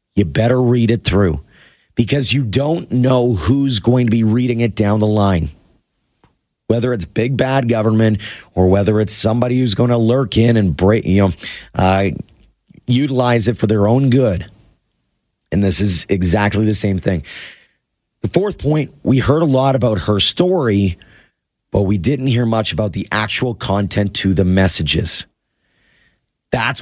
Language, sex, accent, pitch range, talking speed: English, male, American, 100-130 Hz, 165 wpm